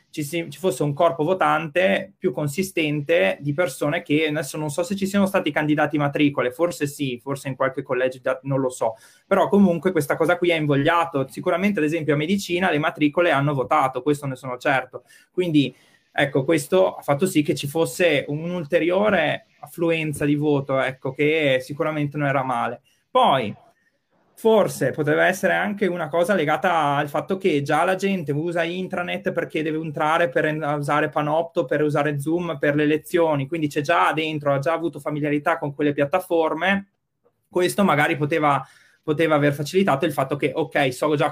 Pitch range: 145-170 Hz